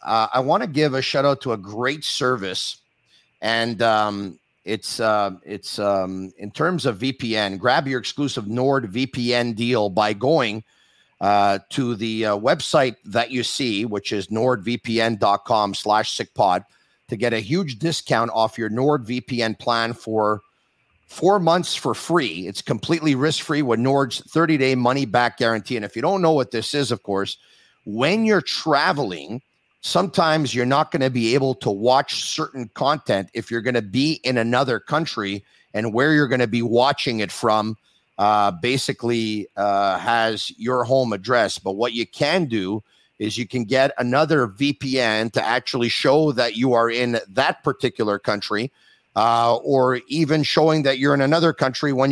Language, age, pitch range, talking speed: English, 50-69, 110-140 Hz, 165 wpm